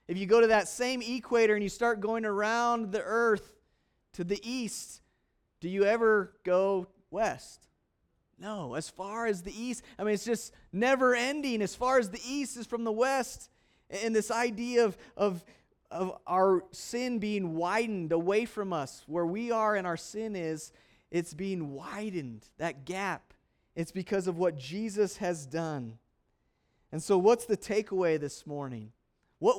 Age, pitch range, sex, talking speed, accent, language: 30-49, 170-225 Hz, male, 165 wpm, American, English